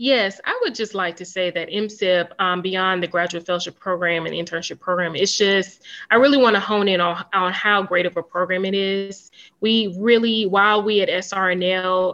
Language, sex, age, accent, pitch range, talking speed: English, female, 20-39, American, 175-195 Hz, 205 wpm